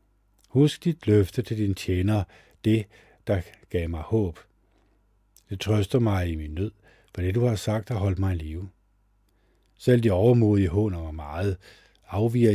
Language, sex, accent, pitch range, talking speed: Danish, male, native, 95-110 Hz, 165 wpm